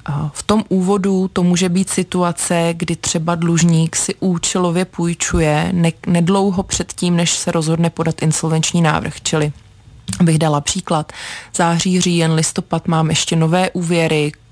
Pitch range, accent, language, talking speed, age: 160-180 Hz, native, Czech, 140 wpm, 20-39